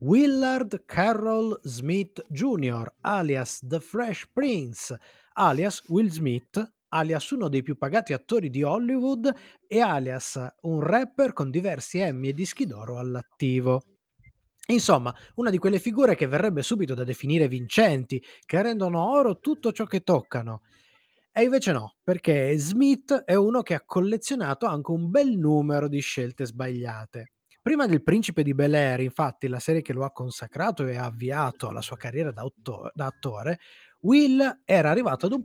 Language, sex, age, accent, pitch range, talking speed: Italian, male, 20-39, native, 135-220 Hz, 155 wpm